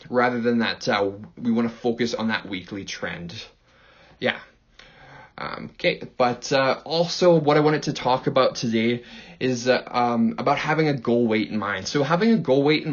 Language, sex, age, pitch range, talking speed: English, male, 20-39, 120-150 Hz, 190 wpm